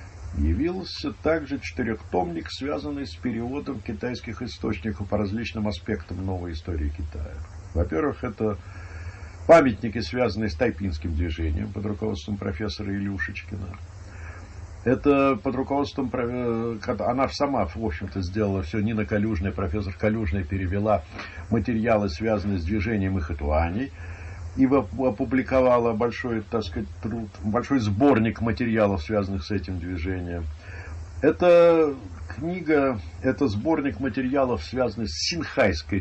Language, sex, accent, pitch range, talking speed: Russian, male, native, 90-115 Hz, 110 wpm